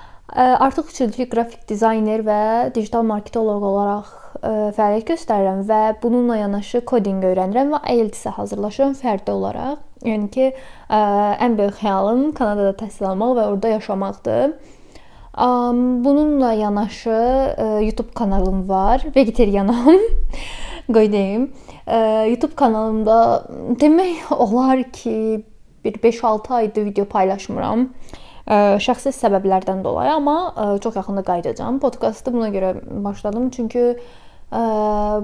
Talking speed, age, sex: 105 wpm, 10-29, female